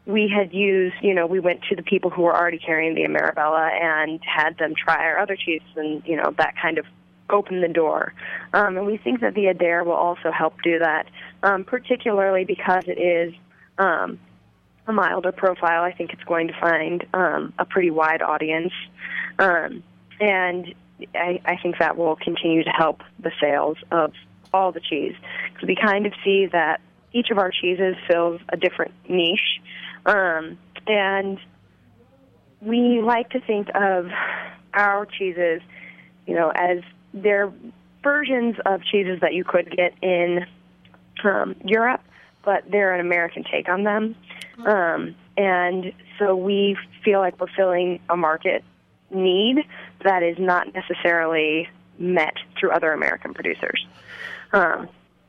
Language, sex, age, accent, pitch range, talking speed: English, female, 20-39, American, 170-195 Hz, 155 wpm